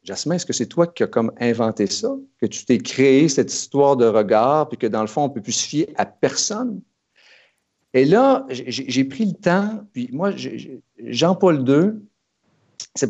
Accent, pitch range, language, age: Canadian, 115-150 Hz, French, 50-69